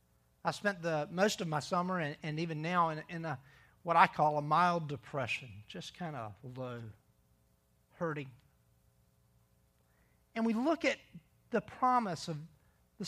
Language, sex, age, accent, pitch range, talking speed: English, male, 50-69, American, 125-175 Hz, 150 wpm